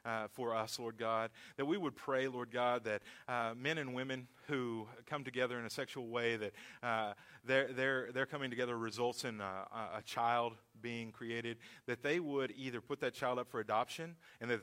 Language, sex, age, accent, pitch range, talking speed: English, male, 40-59, American, 120-150 Hz, 195 wpm